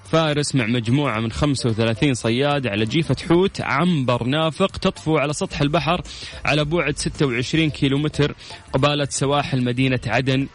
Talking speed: 135 wpm